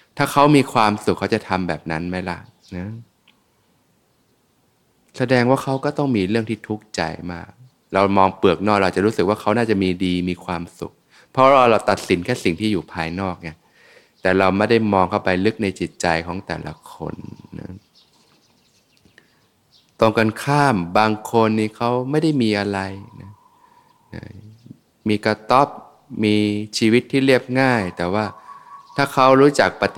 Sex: male